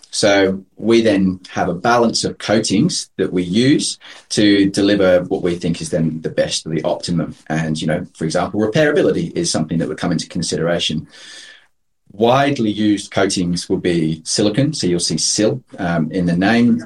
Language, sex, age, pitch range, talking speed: English, male, 30-49, 90-105 Hz, 180 wpm